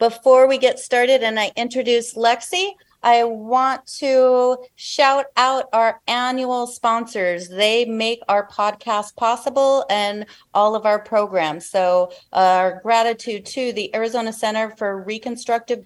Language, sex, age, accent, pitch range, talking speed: English, female, 30-49, American, 205-255 Hz, 135 wpm